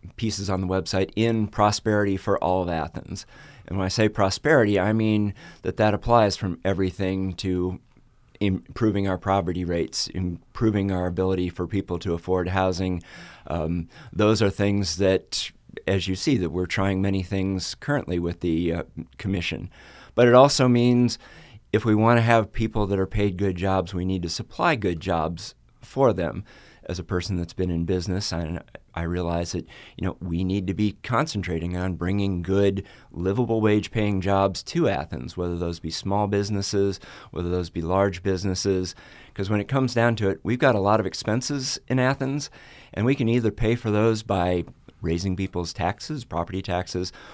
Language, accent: English, American